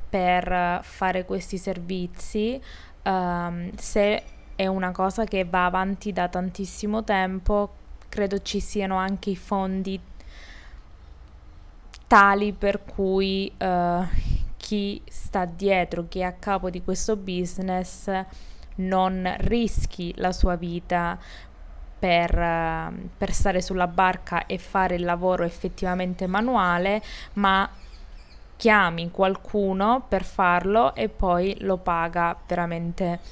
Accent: native